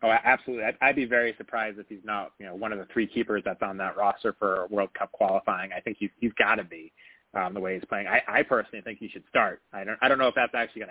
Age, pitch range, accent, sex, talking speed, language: 20-39, 105-120 Hz, American, male, 275 wpm, English